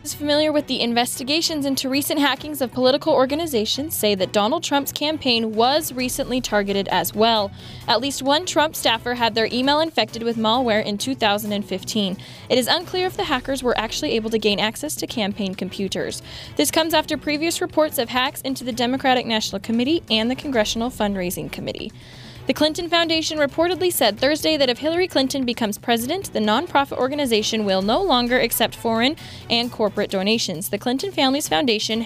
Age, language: 10-29, English